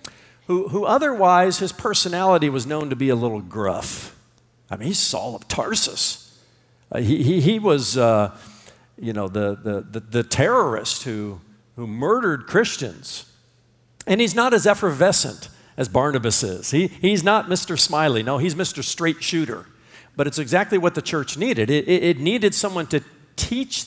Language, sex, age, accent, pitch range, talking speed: English, male, 50-69, American, 120-180 Hz, 165 wpm